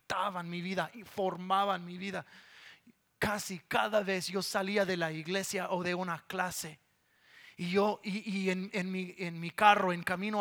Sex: male